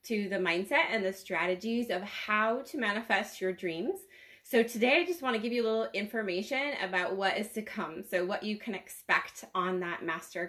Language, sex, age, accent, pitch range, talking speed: English, female, 20-39, American, 185-225 Hz, 200 wpm